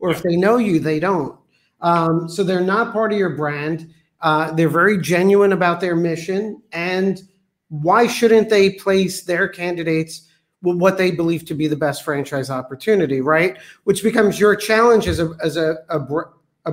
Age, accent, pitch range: 50-69, American, 160-210 Hz